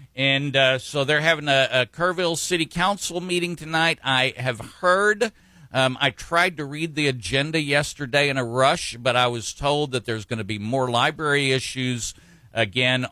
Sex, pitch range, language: male, 120-155 Hz, English